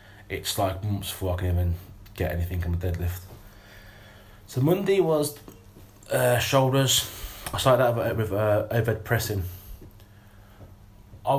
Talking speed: 130 wpm